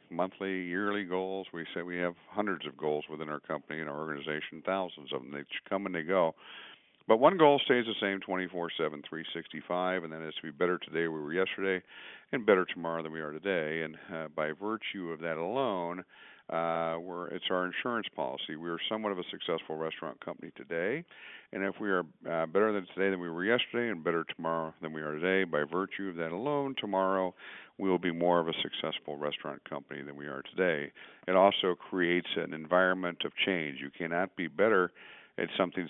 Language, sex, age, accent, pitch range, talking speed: English, male, 50-69, American, 80-95 Hz, 210 wpm